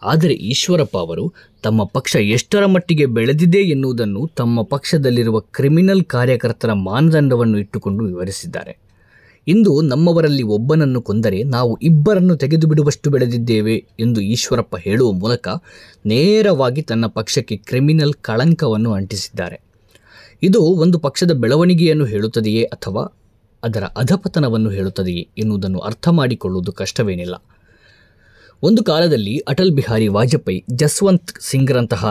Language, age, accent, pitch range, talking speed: Kannada, 20-39, native, 110-160 Hz, 100 wpm